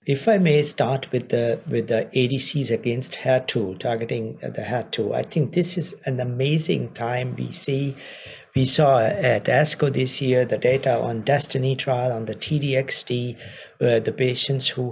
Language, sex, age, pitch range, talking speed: English, male, 50-69, 120-140 Hz, 175 wpm